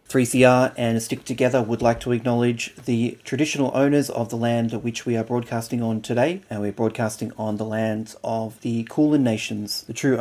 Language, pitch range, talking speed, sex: English, 110-125 Hz, 190 wpm, male